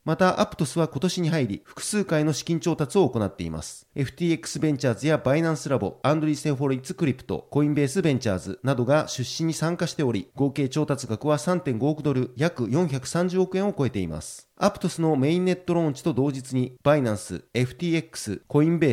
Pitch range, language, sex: 130-165 Hz, Japanese, male